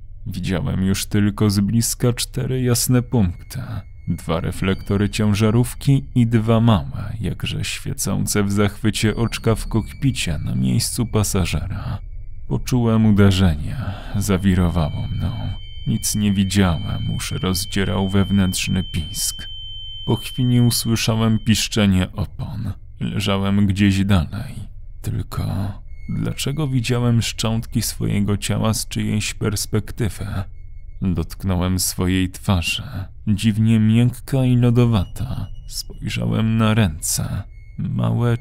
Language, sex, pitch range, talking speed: Polish, male, 95-115 Hz, 100 wpm